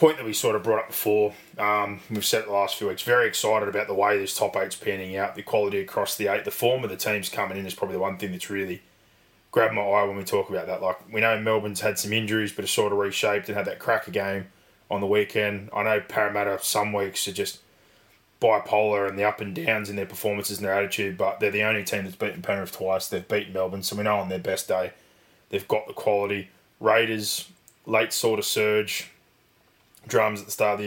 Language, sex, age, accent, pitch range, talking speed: English, male, 20-39, Australian, 95-105 Hz, 245 wpm